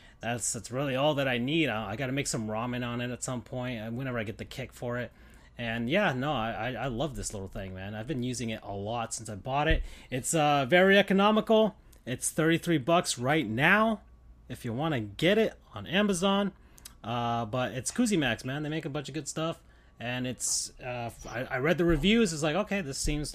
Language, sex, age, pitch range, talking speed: English, male, 30-49, 105-150 Hz, 230 wpm